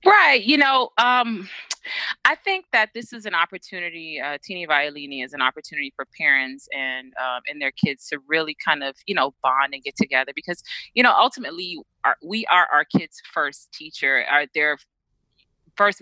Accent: American